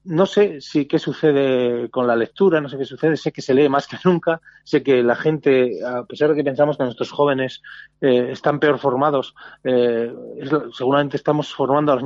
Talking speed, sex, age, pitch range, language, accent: 205 wpm, male, 30-49, 125-160 Hz, Spanish, Spanish